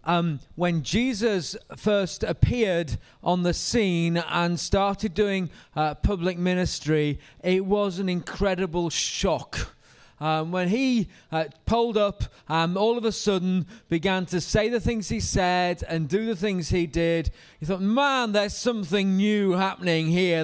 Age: 30-49